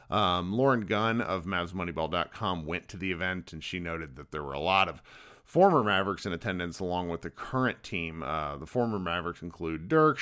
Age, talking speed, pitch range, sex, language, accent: 40-59, 195 wpm, 90-125 Hz, male, English, American